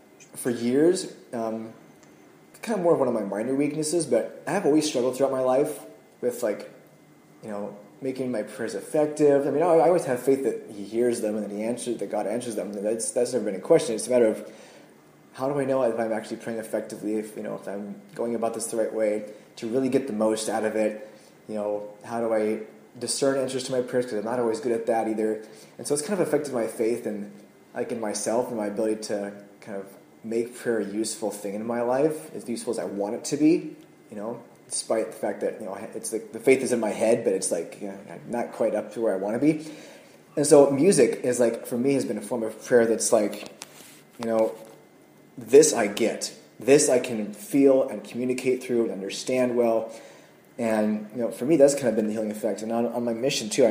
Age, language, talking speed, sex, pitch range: 20-39, English, 240 wpm, male, 105-130 Hz